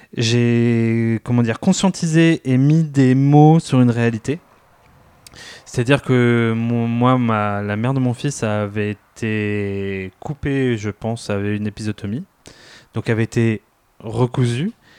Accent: French